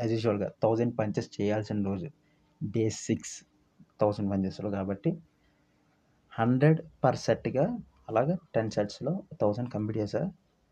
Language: Telugu